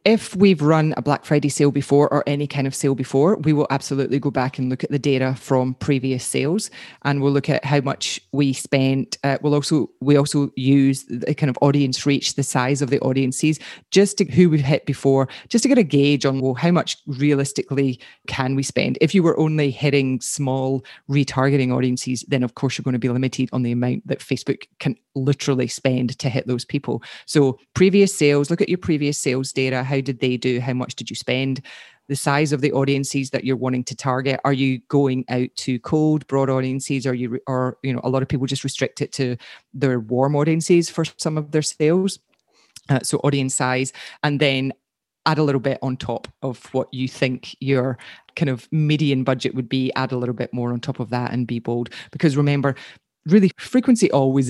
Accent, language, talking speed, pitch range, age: British, English, 215 wpm, 130-145 Hz, 30-49